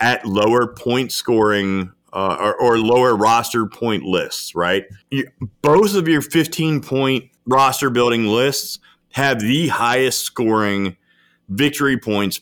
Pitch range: 105-135 Hz